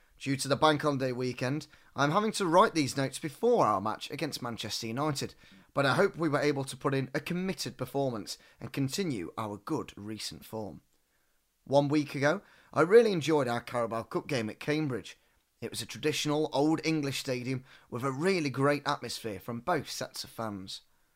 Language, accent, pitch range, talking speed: English, British, 115-155 Hz, 185 wpm